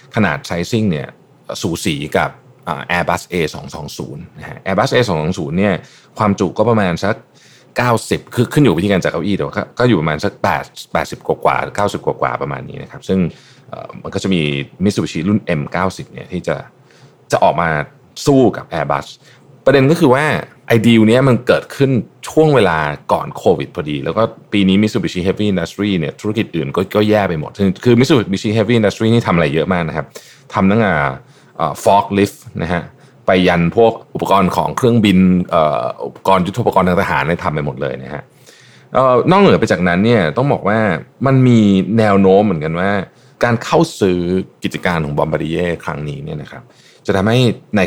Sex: male